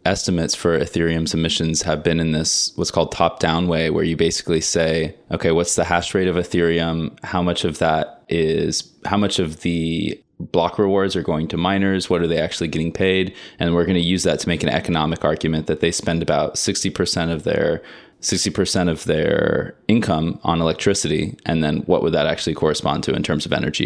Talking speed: 205 wpm